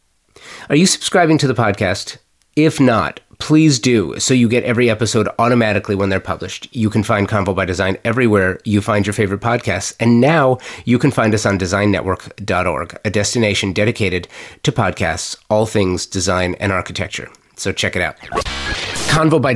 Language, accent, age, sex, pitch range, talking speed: English, American, 30-49, male, 95-115 Hz, 170 wpm